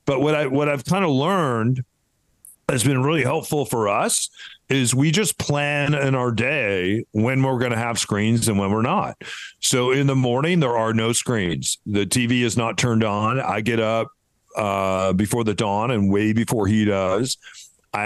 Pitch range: 105-125 Hz